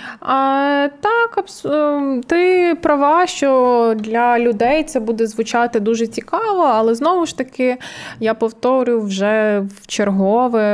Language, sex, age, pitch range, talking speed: Ukrainian, female, 20-39, 200-240 Hz, 115 wpm